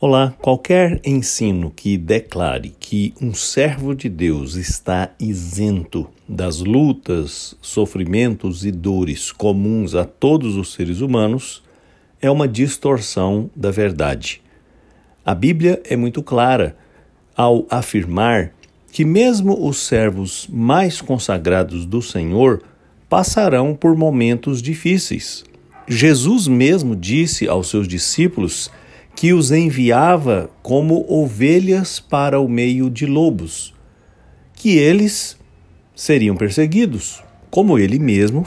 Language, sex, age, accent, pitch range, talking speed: English, male, 60-79, Brazilian, 95-140 Hz, 110 wpm